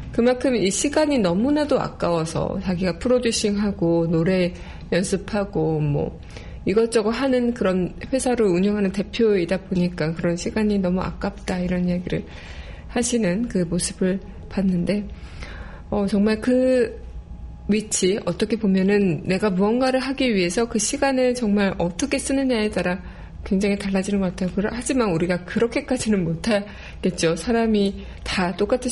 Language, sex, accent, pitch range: Korean, female, native, 175-220 Hz